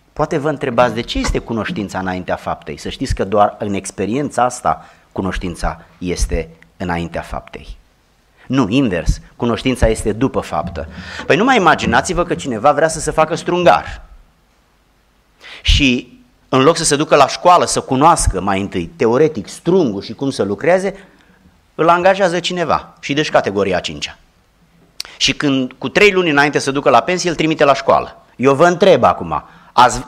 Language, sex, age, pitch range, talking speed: Romanian, male, 30-49, 105-175 Hz, 160 wpm